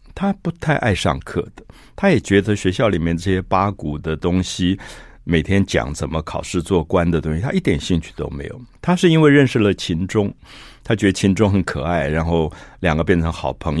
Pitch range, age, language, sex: 80-105 Hz, 50-69, Chinese, male